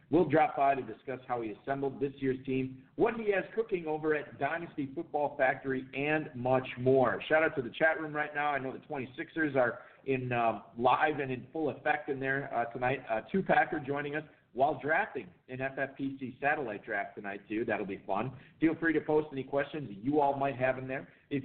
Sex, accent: male, American